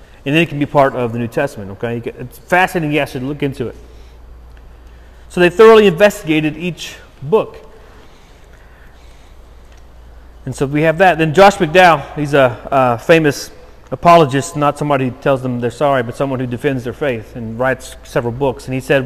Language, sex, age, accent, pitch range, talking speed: English, male, 30-49, American, 115-160 Hz, 180 wpm